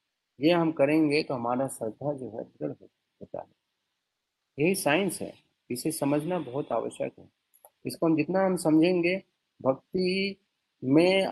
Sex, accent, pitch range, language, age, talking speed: male, native, 140-175 Hz, Hindi, 30-49, 140 wpm